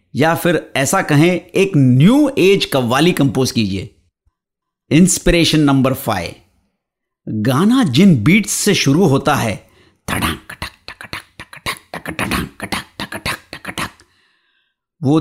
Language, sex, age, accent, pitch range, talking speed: Hindi, male, 50-69, native, 125-180 Hz, 90 wpm